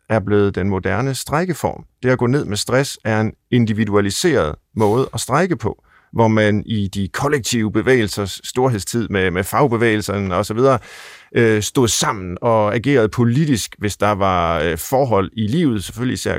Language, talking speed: Danish, 155 wpm